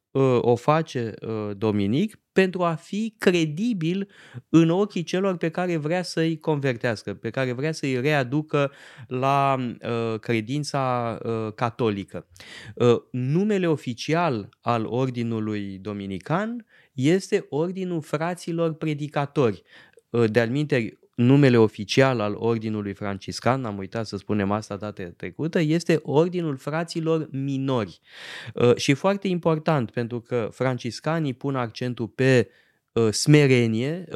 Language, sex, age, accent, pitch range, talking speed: Romanian, male, 20-39, native, 115-160 Hz, 105 wpm